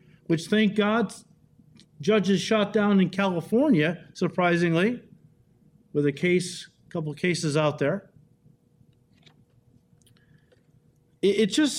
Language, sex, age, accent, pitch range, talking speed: English, male, 50-69, American, 145-190 Hz, 95 wpm